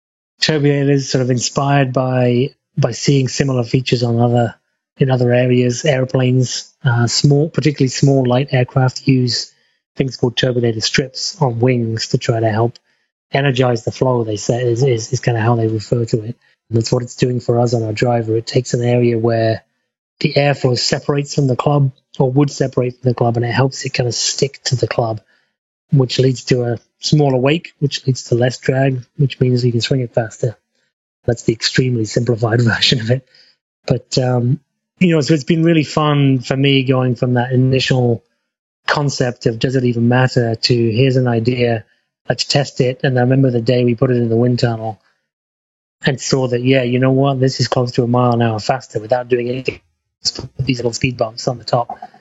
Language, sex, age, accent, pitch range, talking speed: English, male, 30-49, British, 120-135 Hz, 200 wpm